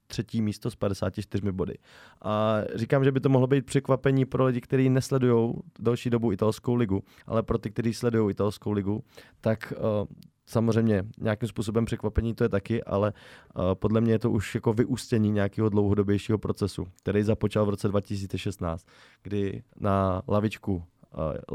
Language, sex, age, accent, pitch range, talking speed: Czech, male, 20-39, native, 100-115 Hz, 160 wpm